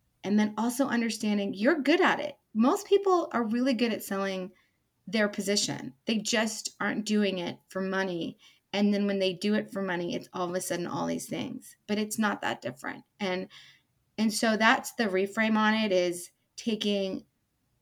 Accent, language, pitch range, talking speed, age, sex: American, English, 180-220 Hz, 185 wpm, 30-49, female